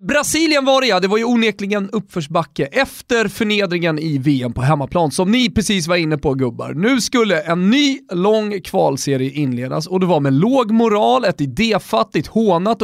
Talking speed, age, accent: 180 wpm, 30-49, native